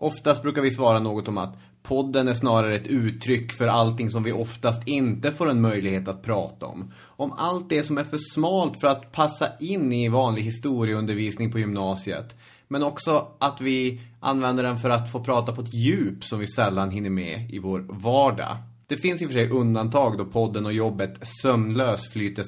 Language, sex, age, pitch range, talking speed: English, male, 30-49, 105-130 Hz, 200 wpm